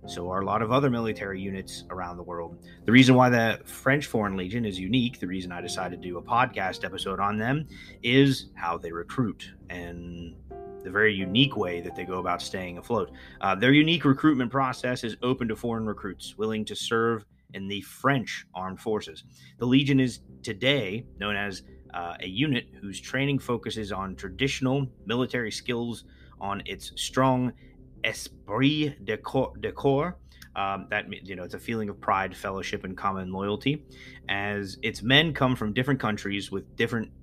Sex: male